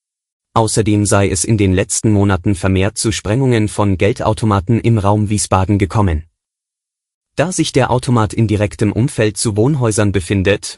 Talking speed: 145 wpm